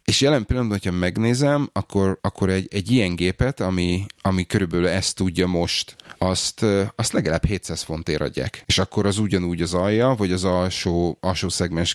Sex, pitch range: male, 90-105 Hz